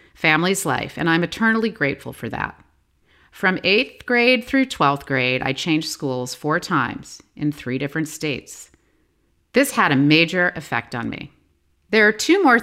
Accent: American